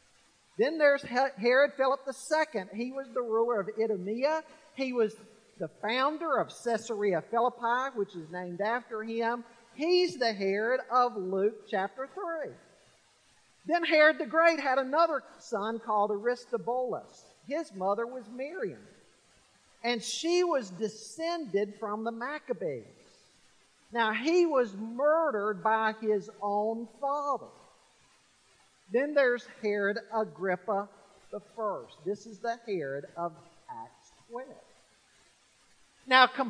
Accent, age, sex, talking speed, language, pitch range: American, 50-69, male, 115 wpm, English, 215-280 Hz